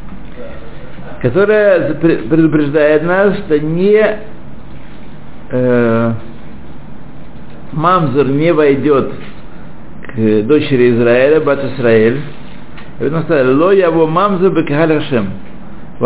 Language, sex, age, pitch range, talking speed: Russian, male, 60-79, 130-170 Hz, 65 wpm